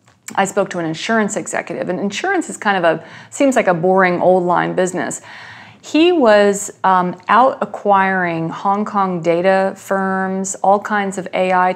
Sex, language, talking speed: female, English, 165 wpm